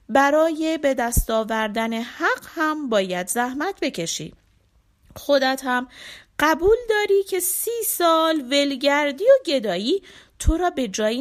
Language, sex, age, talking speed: Persian, female, 30-49, 120 wpm